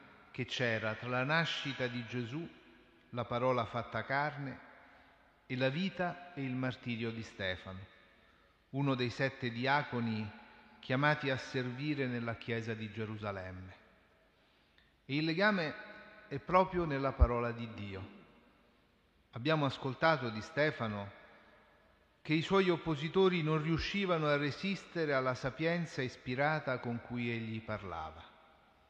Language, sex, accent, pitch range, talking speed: Italian, male, native, 115-155 Hz, 120 wpm